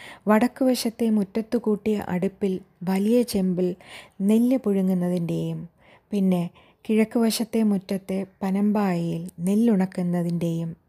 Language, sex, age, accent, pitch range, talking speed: Malayalam, female, 20-39, native, 175-215 Hz, 70 wpm